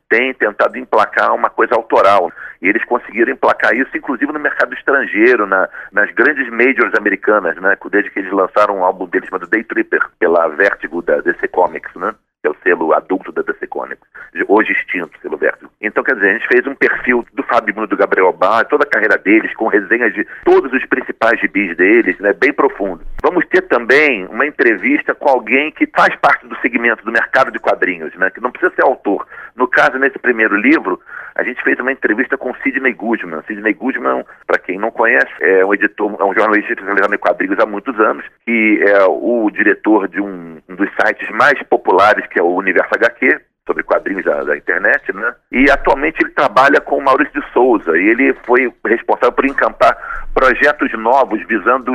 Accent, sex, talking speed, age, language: Brazilian, male, 195 wpm, 40-59, Portuguese